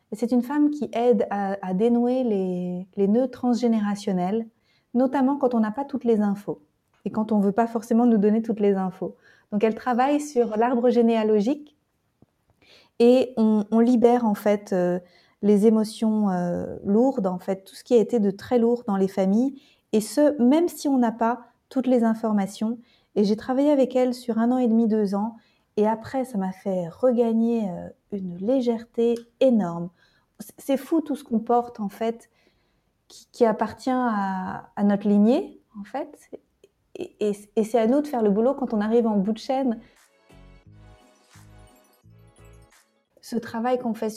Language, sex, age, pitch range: French, female, 30-49, 200-245 Hz